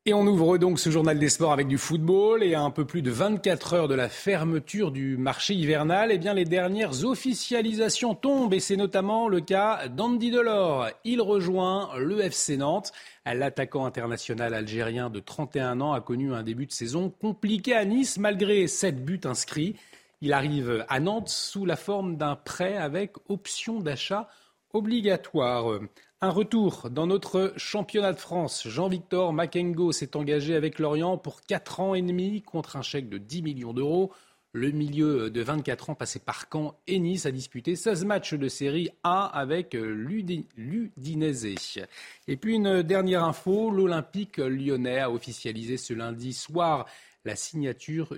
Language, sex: French, male